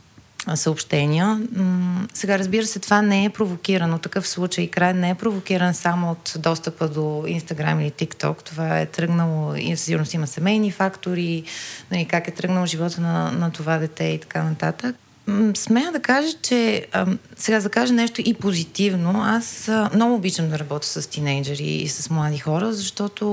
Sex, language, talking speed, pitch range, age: female, Bulgarian, 160 wpm, 160-200 Hz, 30-49